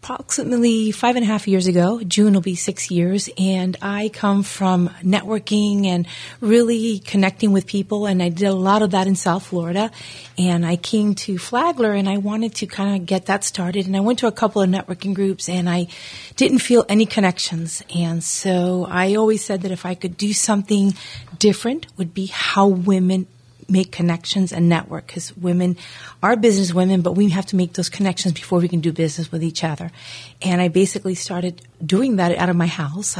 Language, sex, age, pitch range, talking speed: English, female, 40-59, 175-200 Hz, 200 wpm